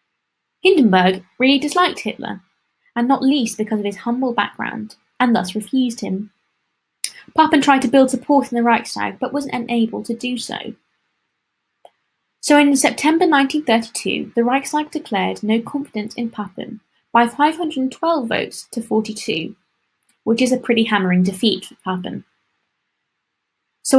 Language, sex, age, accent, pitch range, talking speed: English, female, 20-39, British, 215-270 Hz, 140 wpm